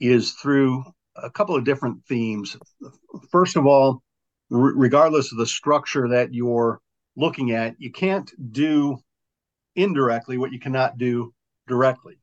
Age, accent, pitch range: 50-69, American, 110-130 Hz